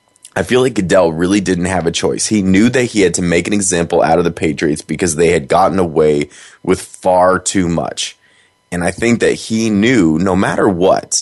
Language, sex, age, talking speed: English, male, 20-39, 215 wpm